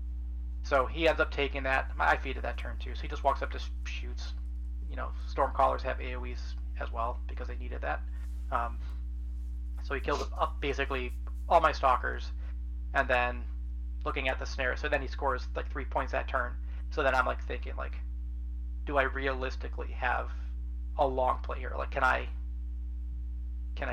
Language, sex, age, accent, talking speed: English, male, 20-39, American, 180 wpm